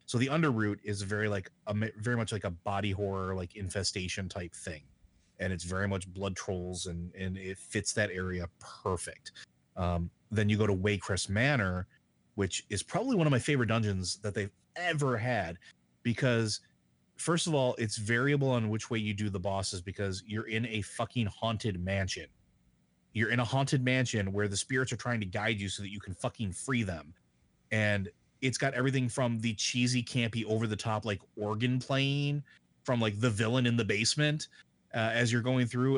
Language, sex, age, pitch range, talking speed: English, male, 30-49, 95-120 Hz, 190 wpm